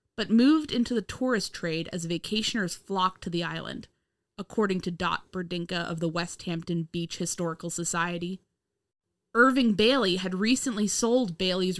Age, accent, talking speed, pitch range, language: 20-39, American, 145 wpm, 175-225 Hz, English